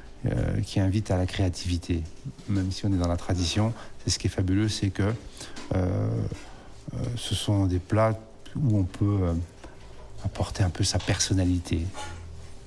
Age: 60-79